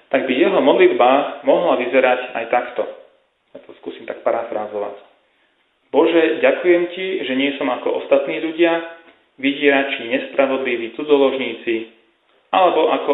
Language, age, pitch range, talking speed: Slovak, 30-49, 125-165 Hz, 125 wpm